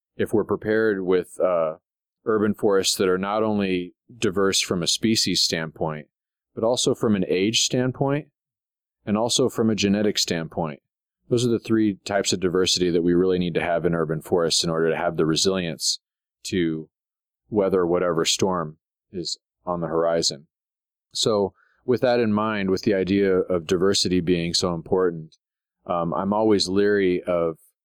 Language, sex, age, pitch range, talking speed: English, male, 30-49, 85-105 Hz, 165 wpm